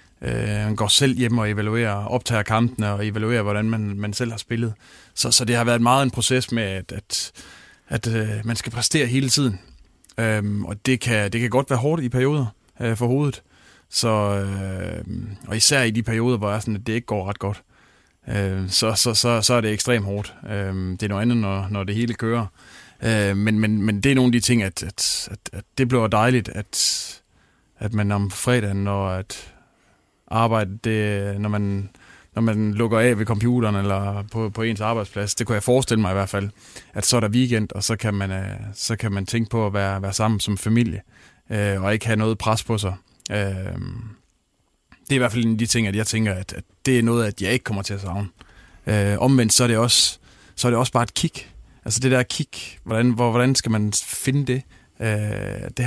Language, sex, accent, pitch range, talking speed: Danish, male, native, 100-120 Hz, 220 wpm